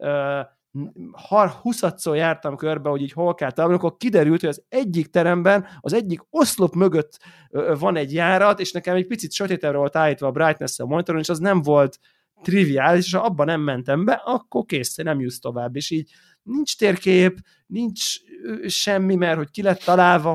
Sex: male